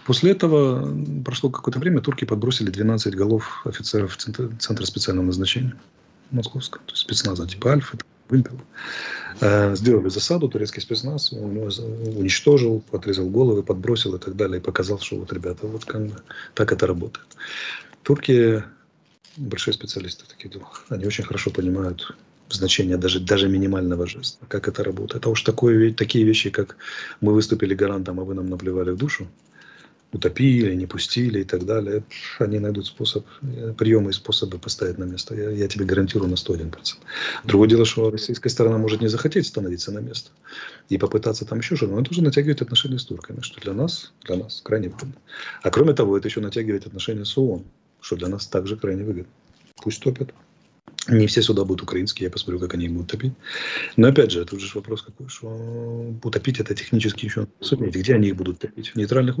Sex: male